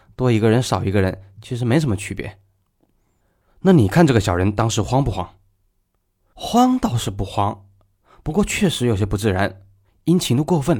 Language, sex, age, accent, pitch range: Chinese, male, 20-39, native, 95-140 Hz